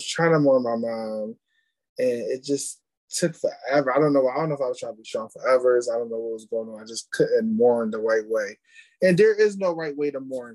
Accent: American